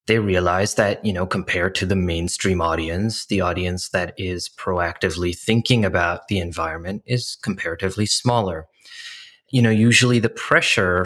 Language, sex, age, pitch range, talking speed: English, male, 20-39, 95-115 Hz, 145 wpm